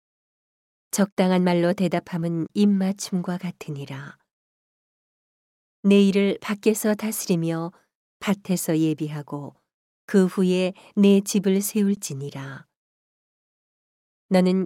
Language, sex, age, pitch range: Korean, female, 40-59, 160-200 Hz